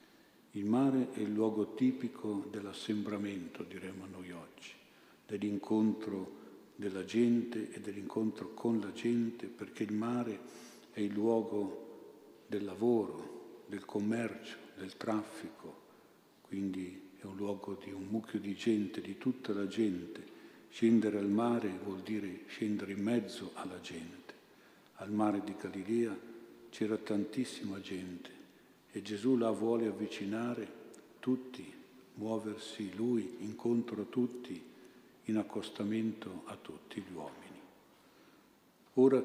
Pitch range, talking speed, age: 105-115 Hz, 120 wpm, 50-69